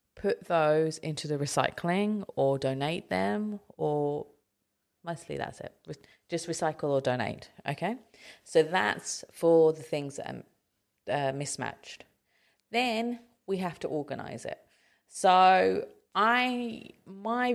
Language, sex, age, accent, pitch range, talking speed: English, female, 30-49, British, 140-185 Hz, 120 wpm